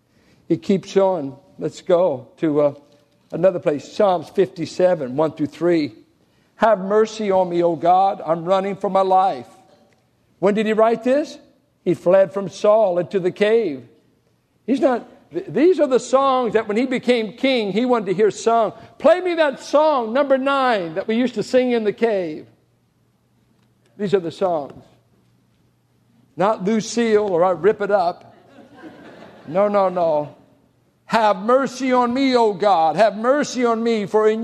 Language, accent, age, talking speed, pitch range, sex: English, American, 50-69, 160 wpm, 190-255 Hz, male